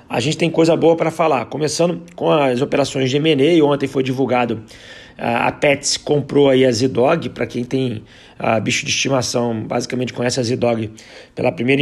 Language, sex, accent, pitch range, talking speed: Portuguese, male, Brazilian, 125-145 Hz, 180 wpm